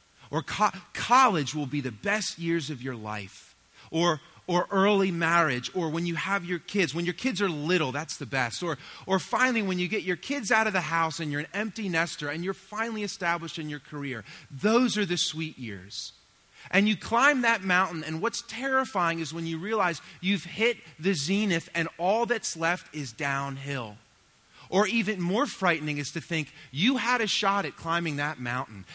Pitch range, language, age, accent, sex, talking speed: 140-200 Hz, English, 30-49, American, male, 195 wpm